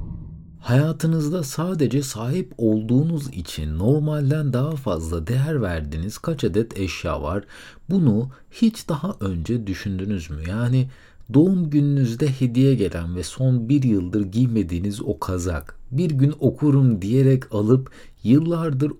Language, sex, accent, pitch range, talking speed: Turkish, male, native, 90-140 Hz, 120 wpm